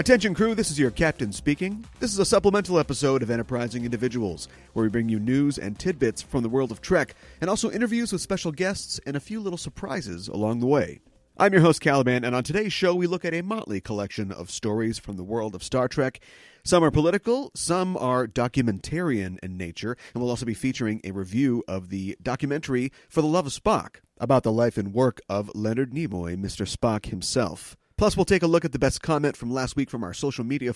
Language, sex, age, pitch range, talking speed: English, male, 30-49, 110-170 Hz, 220 wpm